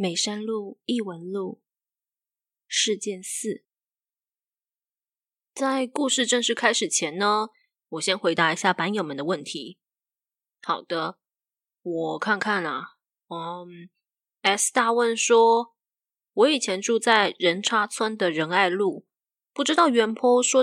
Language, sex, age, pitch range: Chinese, female, 20-39, 195-245 Hz